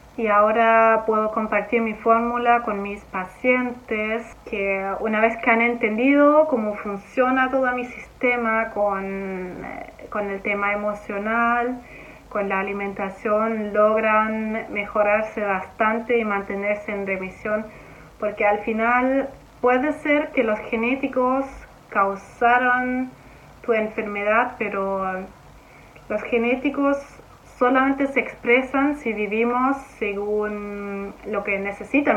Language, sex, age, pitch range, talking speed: Spanish, female, 30-49, 205-245 Hz, 110 wpm